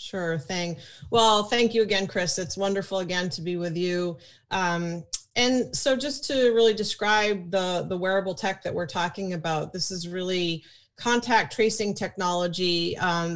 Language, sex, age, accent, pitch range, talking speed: English, female, 30-49, American, 175-215 Hz, 160 wpm